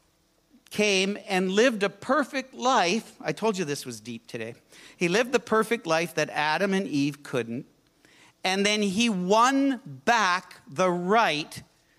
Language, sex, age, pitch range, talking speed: English, male, 50-69, 150-205 Hz, 150 wpm